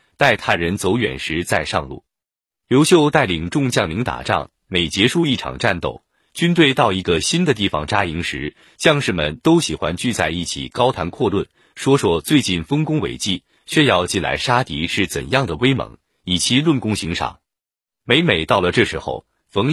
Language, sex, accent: Chinese, male, native